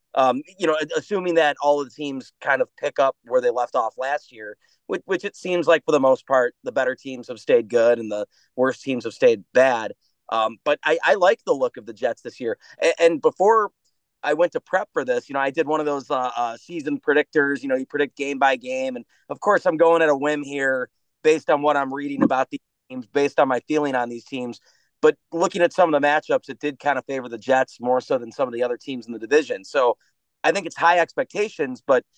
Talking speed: 255 wpm